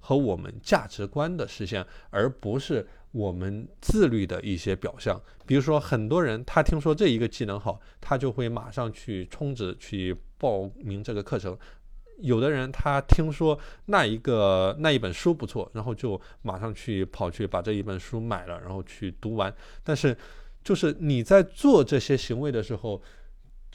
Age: 20-39